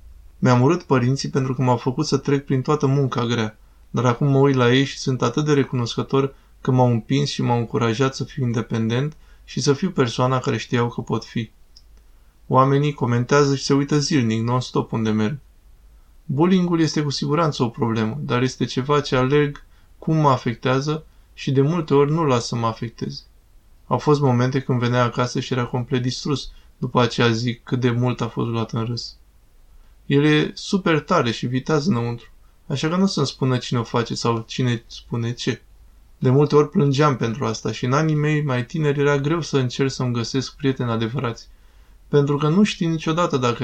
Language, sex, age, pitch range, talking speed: Romanian, male, 20-39, 115-140 Hz, 195 wpm